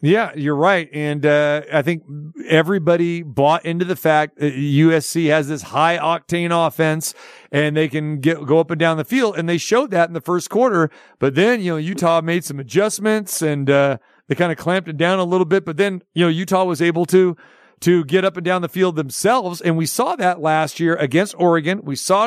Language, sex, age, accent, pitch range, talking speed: English, male, 40-59, American, 160-190 Hz, 220 wpm